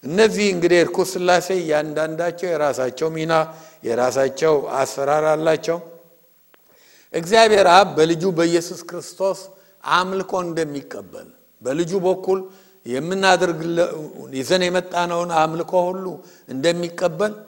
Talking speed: 50 wpm